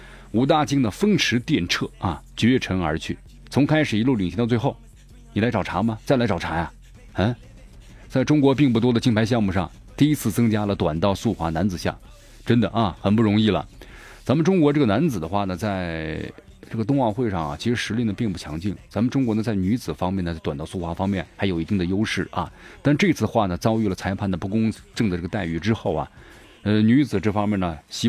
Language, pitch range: Chinese, 90-115 Hz